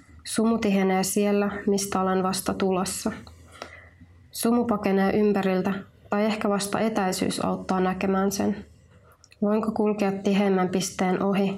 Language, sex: Finnish, female